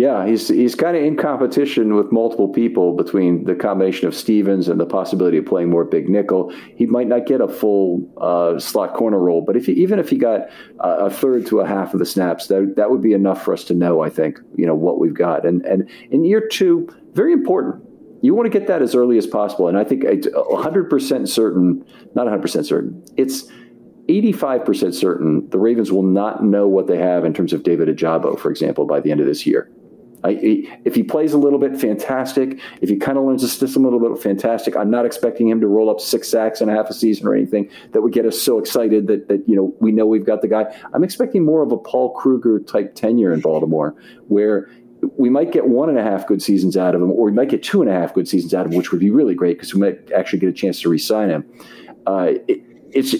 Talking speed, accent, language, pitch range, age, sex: 240 wpm, American, English, 95-140 Hz, 50-69, male